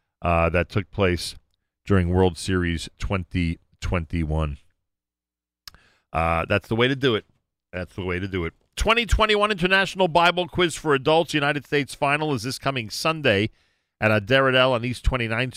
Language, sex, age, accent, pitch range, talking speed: English, male, 40-59, American, 90-130 Hz, 155 wpm